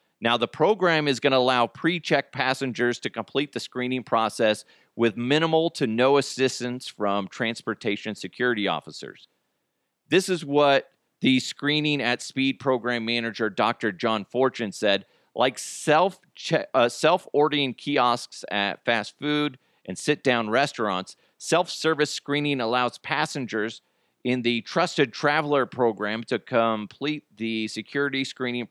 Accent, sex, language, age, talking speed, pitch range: American, male, English, 40-59, 125 wpm, 115-145 Hz